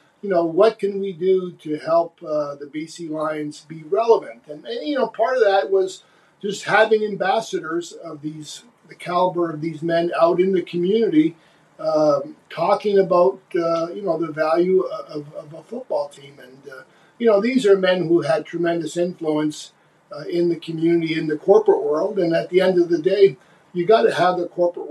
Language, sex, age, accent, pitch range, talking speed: English, male, 50-69, American, 160-205 Hz, 195 wpm